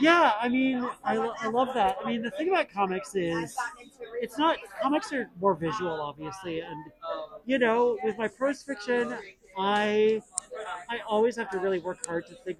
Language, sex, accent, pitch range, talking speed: English, male, American, 185-235 Hz, 180 wpm